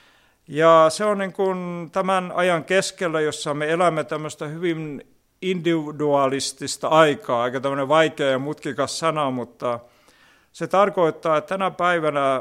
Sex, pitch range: male, 140-175 Hz